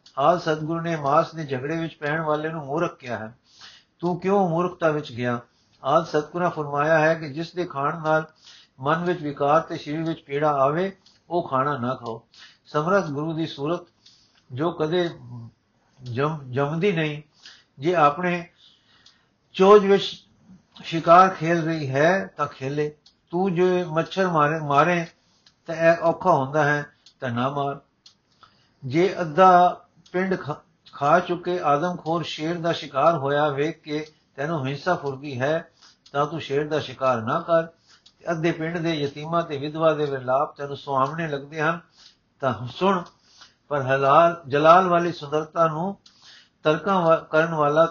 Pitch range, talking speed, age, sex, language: 140-170 Hz, 150 wpm, 50-69, male, Punjabi